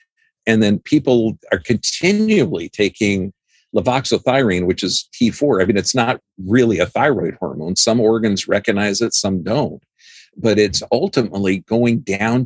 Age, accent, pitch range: 50-69, American, 100-125 Hz